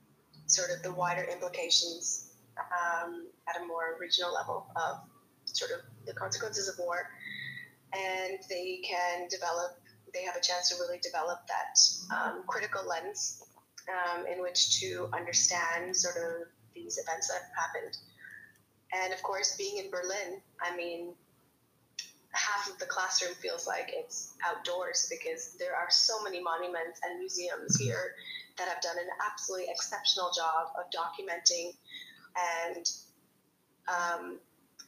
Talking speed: 140 wpm